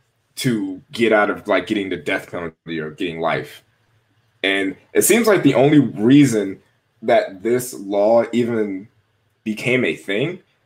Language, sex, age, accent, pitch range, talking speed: English, male, 20-39, American, 105-130 Hz, 145 wpm